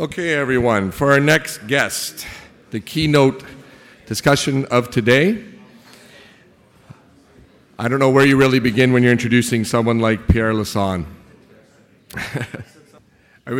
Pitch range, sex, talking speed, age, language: 100-130 Hz, male, 110 wpm, 40-59, English